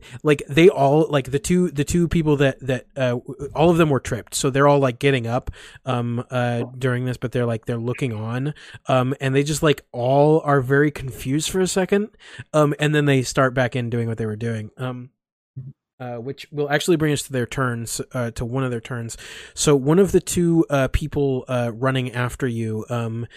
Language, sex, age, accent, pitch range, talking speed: English, male, 20-39, American, 115-140 Hz, 220 wpm